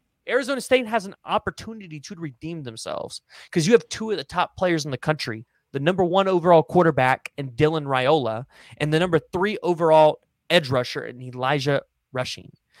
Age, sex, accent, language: 30-49, male, American, English